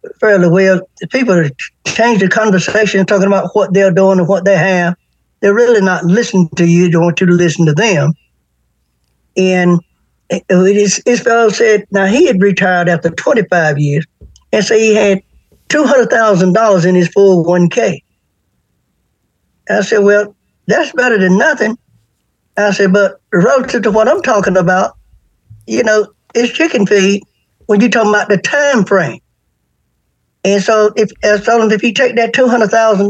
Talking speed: 160 wpm